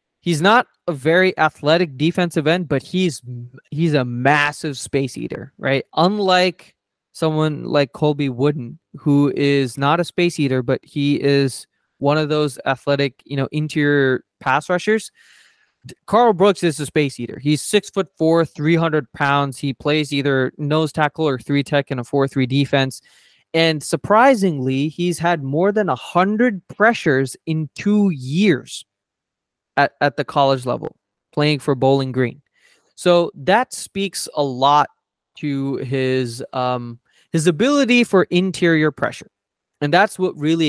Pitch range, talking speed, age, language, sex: 135-165 Hz, 150 wpm, 20-39, English, male